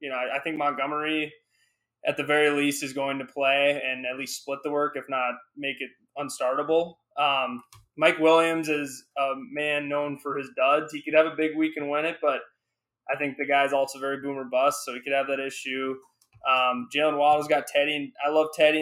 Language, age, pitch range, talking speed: English, 20-39, 135-150 Hz, 210 wpm